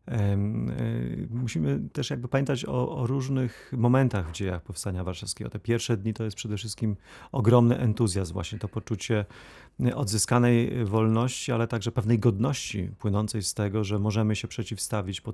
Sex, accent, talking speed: male, native, 150 wpm